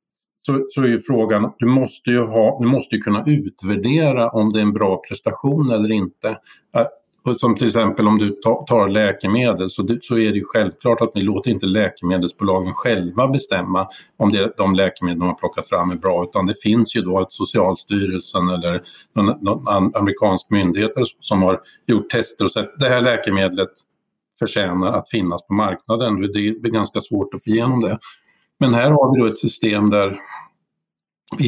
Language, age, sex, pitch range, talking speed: Swedish, 50-69, male, 100-120 Hz, 175 wpm